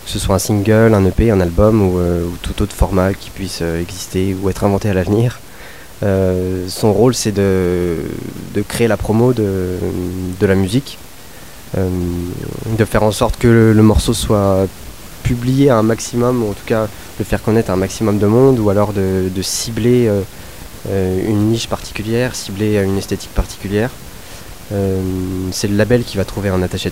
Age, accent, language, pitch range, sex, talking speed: 20-39, French, French, 95-110 Hz, male, 190 wpm